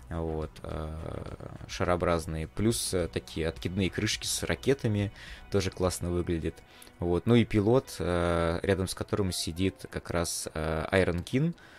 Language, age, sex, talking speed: Russian, 20-39, male, 110 wpm